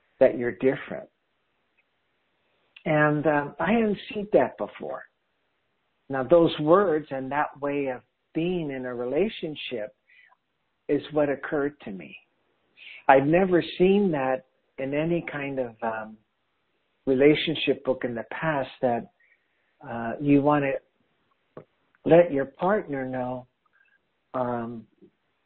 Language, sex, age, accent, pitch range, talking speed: English, male, 60-79, American, 130-165 Hz, 120 wpm